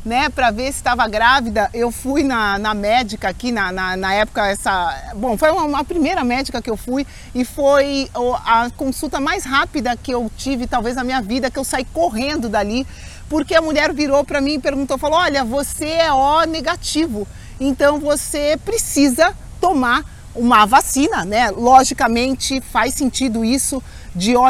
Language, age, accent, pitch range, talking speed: Portuguese, 40-59, Brazilian, 240-280 Hz, 175 wpm